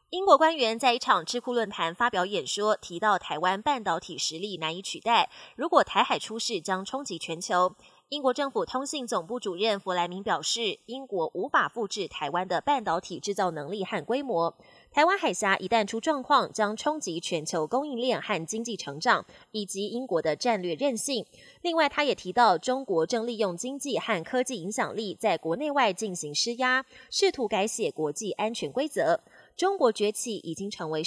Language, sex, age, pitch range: Chinese, female, 20-39, 190-260 Hz